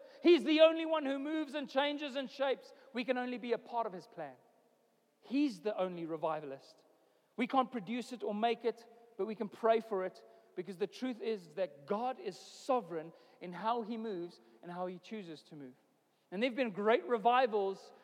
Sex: male